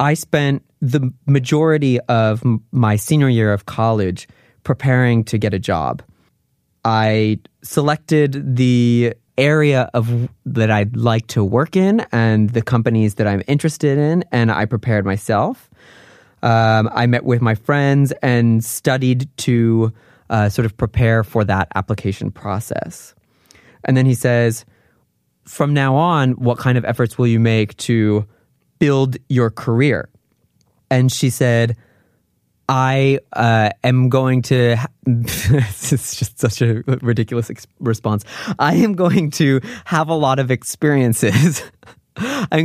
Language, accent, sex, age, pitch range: Korean, American, male, 20-39, 115-135 Hz